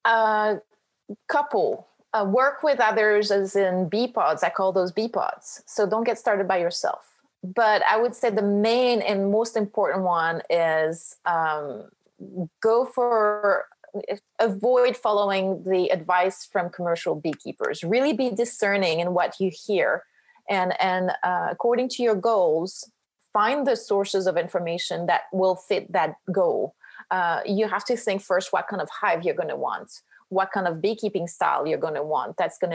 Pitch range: 180-220 Hz